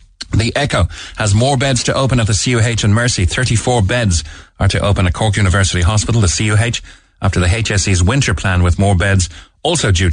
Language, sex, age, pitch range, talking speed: English, male, 30-49, 90-120 Hz, 195 wpm